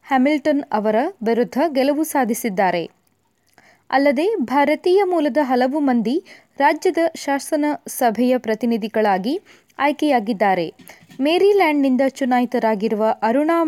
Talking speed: 70 wpm